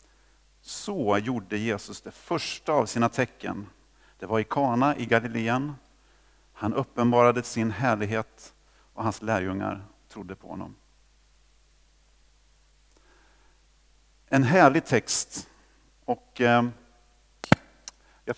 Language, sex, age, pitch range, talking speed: Swedish, male, 50-69, 110-145 Hz, 100 wpm